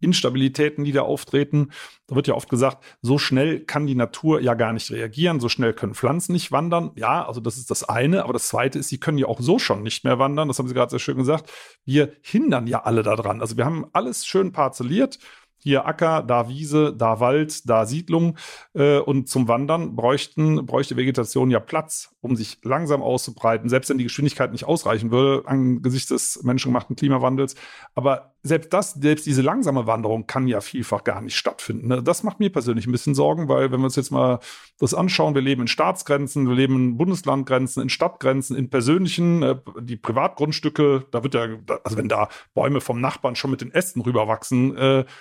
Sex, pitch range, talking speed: male, 125-150 Hz, 200 wpm